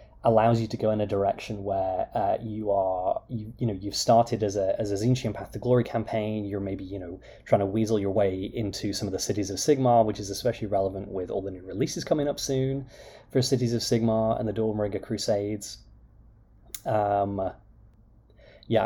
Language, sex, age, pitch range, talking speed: English, male, 20-39, 100-115 Hz, 200 wpm